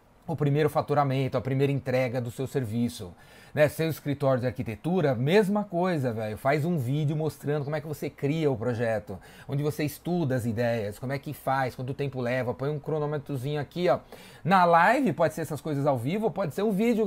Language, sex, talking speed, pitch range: Portuguese, male, 205 wpm, 135-170 Hz